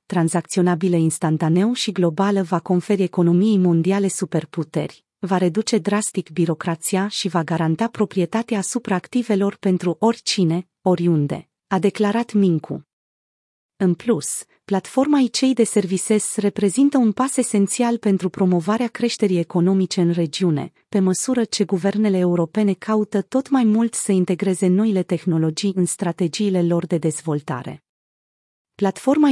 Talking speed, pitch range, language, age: 120 wpm, 175-215 Hz, Romanian, 30-49